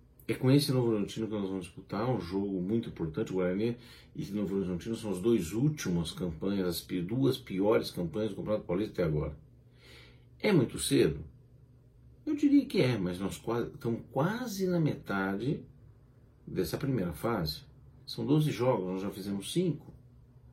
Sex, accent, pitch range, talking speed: male, Brazilian, 95-145 Hz, 165 wpm